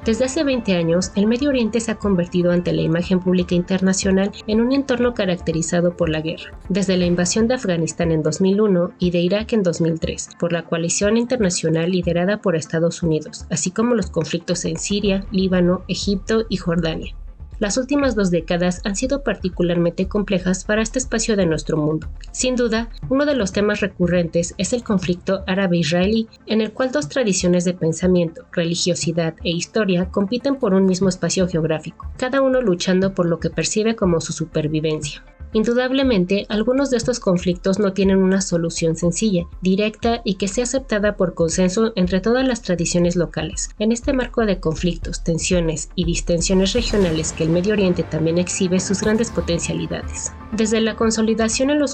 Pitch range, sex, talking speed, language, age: 170-220 Hz, female, 170 wpm, Spanish, 30-49